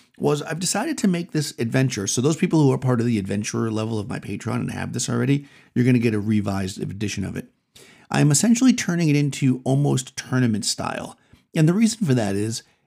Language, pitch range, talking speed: English, 110-140 Hz, 220 wpm